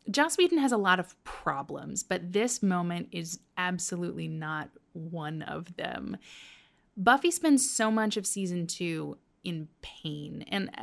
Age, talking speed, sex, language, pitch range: 20-39, 145 wpm, female, English, 180-230 Hz